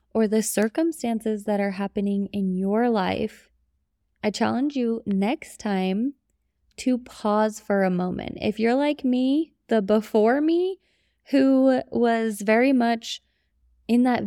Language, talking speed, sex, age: English, 135 wpm, female, 20-39